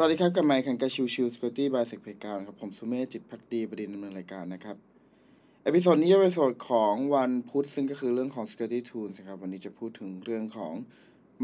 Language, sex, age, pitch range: Thai, male, 20-39, 115-150 Hz